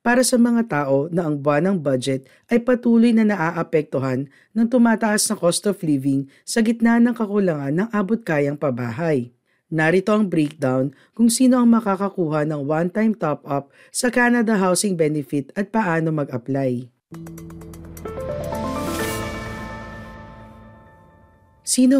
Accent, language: native, Filipino